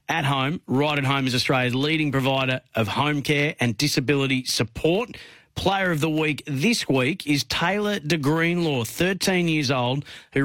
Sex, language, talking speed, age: male, English, 165 wpm, 40-59